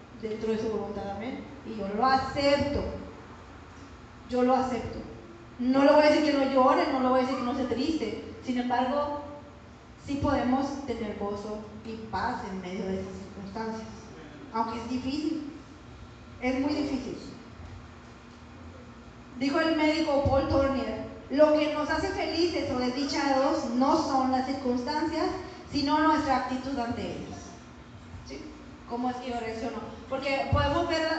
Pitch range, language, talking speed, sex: 250-300 Hz, Spanish, 150 wpm, female